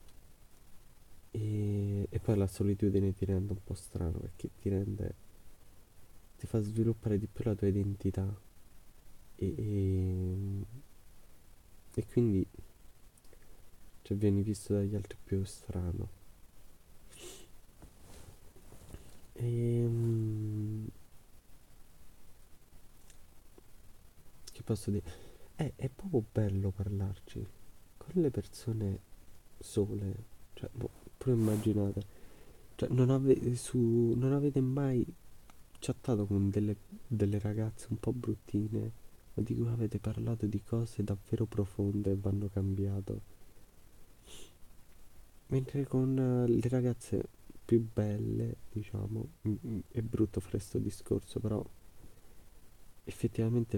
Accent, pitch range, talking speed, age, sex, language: native, 95-115 Hz, 100 wpm, 20-39, male, Italian